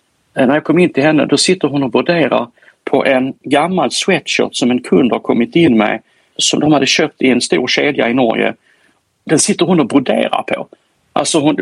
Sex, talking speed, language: male, 205 wpm, English